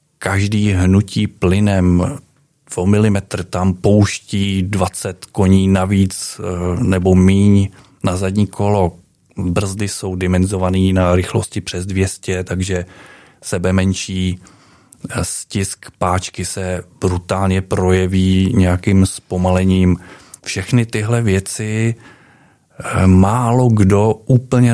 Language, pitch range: Czech, 95-110 Hz